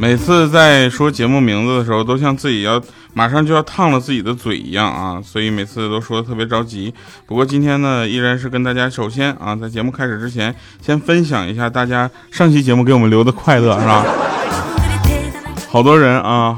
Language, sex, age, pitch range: Chinese, male, 20-39, 110-165 Hz